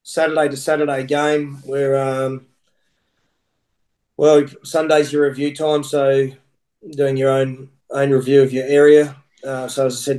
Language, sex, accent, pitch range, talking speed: English, male, Australian, 130-140 Hz, 145 wpm